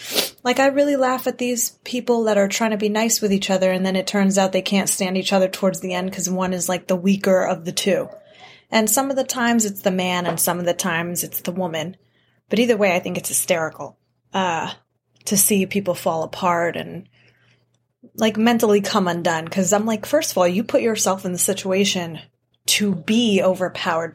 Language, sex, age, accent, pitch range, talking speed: English, female, 20-39, American, 180-215 Hz, 215 wpm